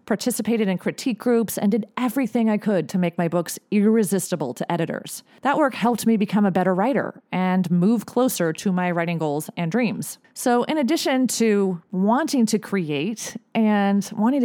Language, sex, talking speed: English, female, 175 wpm